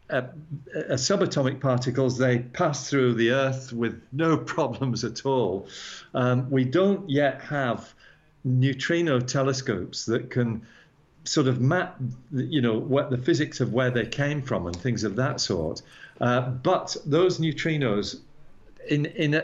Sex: male